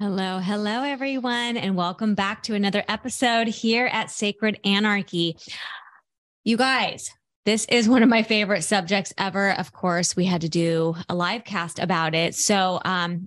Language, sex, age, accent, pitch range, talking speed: English, female, 20-39, American, 175-215 Hz, 165 wpm